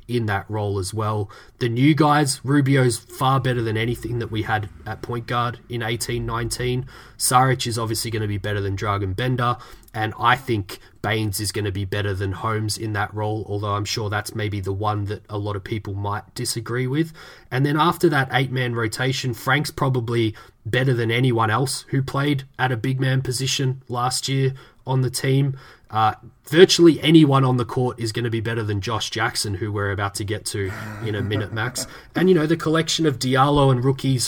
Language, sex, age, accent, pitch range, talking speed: English, male, 20-39, Australian, 110-130 Hz, 205 wpm